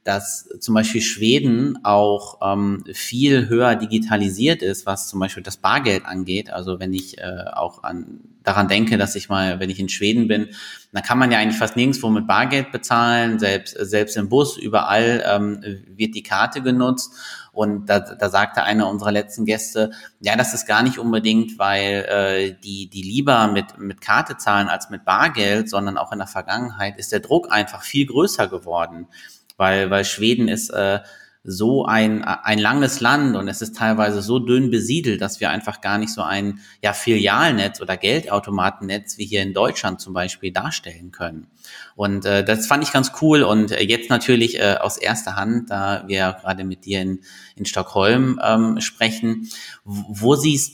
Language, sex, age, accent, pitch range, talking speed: German, male, 30-49, German, 100-115 Hz, 180 wpm